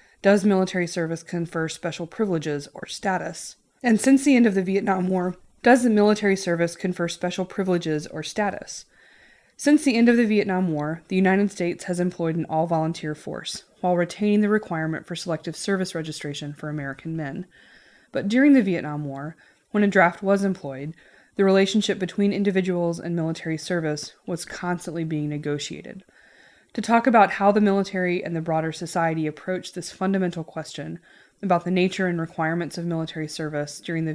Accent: American